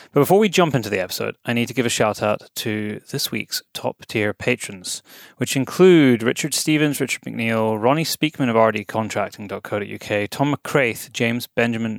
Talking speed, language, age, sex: 170 wpm, English, 30-49, male